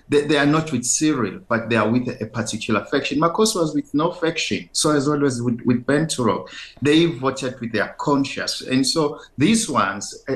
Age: 50-69